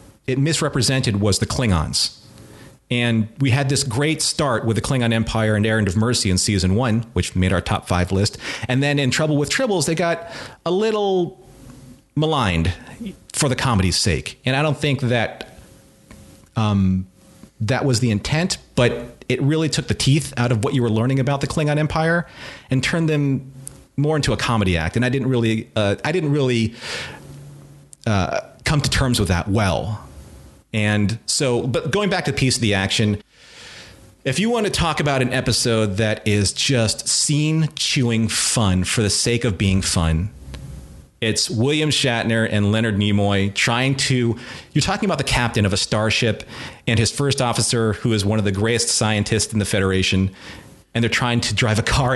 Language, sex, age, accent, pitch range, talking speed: English, male, 40-59, American, 105-135 Hz, 185 wpm